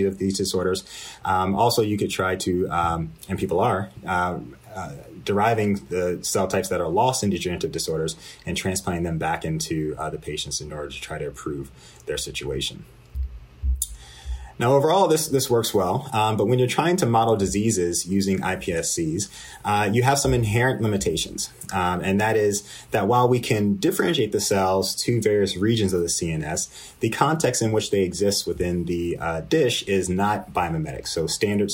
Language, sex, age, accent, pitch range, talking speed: English, male, 30-49, American, 85-110 Hz, 180 wpm